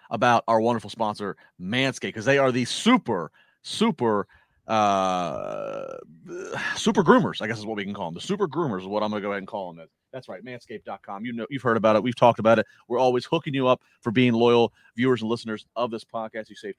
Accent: American